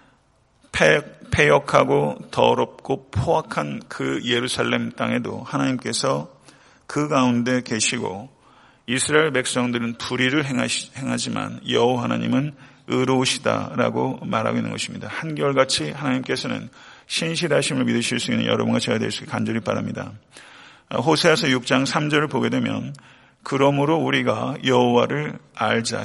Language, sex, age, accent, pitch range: Korean, male, 40-59, native, 115-135 Hz